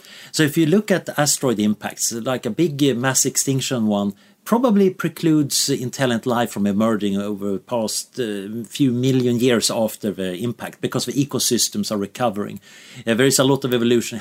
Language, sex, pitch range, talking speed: English, male, 115-155 Hz, 165 wpm